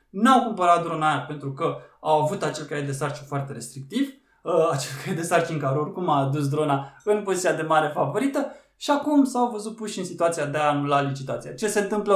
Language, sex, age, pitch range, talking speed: Romanian, male, 20-39, 145-215 Hz, 210 wpm